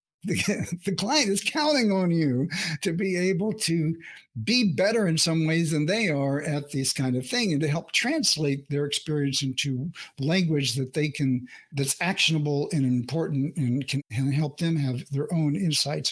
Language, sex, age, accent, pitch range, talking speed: English, male, 60-79, American, 150-200 Hz, 170 wpm